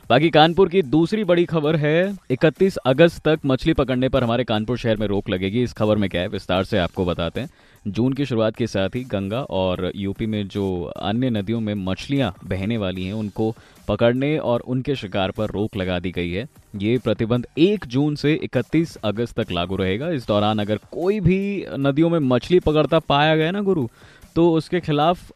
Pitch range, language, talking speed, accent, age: 105-145 Hz, Hindi, 200 wpm, native, 20-39